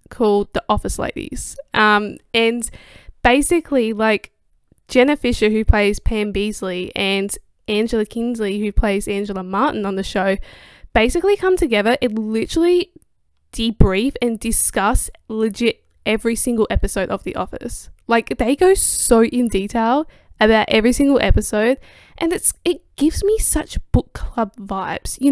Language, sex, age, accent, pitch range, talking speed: English, female, 10-29, Australian, 215-260 Hz, 140 wpm